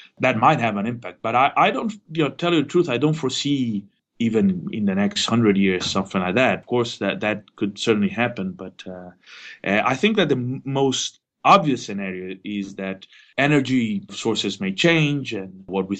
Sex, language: male, English